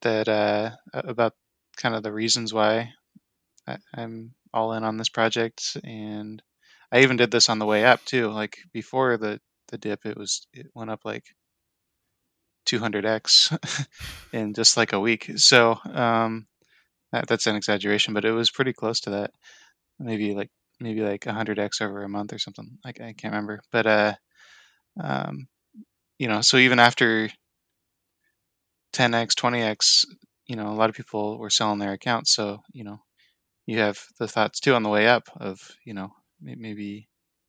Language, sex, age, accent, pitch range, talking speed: English, male, 20-39, American, 105-115 Hz, 170 wpm